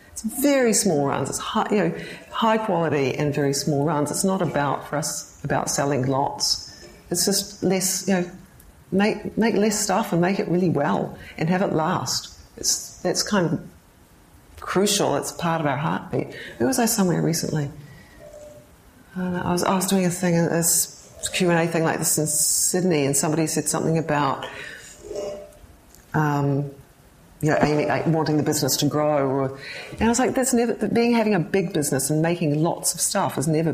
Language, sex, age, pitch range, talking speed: English, female, 40-59, 145-185 Hz, 185 wpm